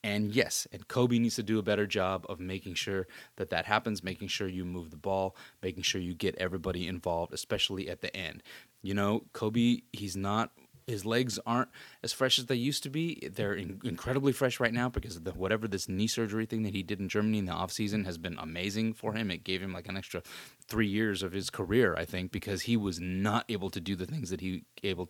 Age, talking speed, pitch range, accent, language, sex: 30-49, 235 wpm, 95-115 Hz, American, English, male